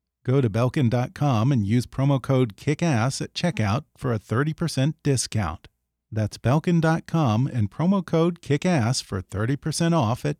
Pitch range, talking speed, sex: 115-155 Hz, 140 wpm, male